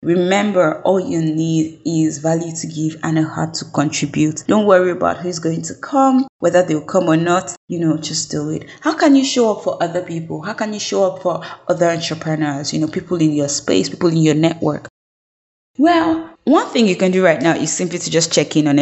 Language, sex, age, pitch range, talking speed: English, female, 20-39, 155-180 Hz, 225 wpm